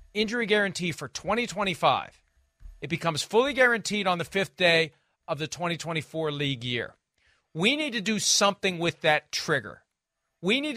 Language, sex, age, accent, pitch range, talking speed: English, male, 40-59, American, 160-210 Hz, 150 wpm